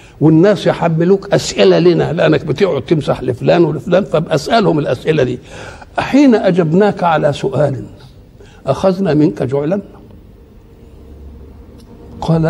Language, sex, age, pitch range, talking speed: Arabic, male, 60-79, 125-195 Hz, 95 wpm